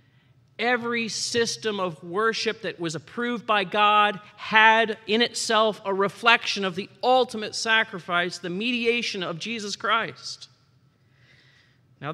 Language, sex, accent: English, male, American